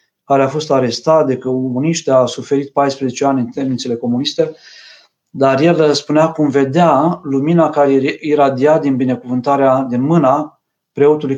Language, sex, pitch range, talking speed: Romanian, male, 135-155 Hz, 140 wpm